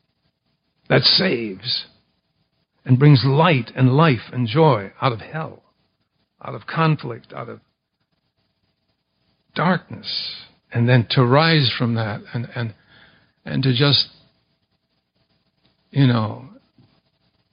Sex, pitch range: male, 110-140 Hz